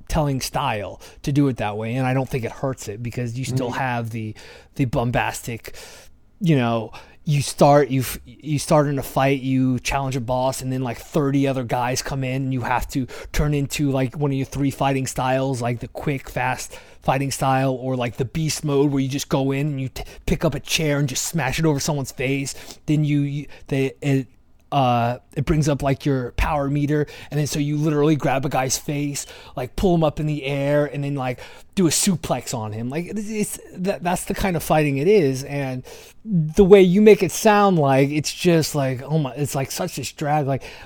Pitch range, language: 130-155 Hz, English